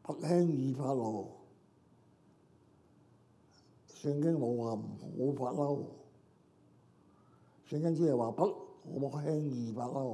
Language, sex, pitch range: Chinese, male, 125-155 Hz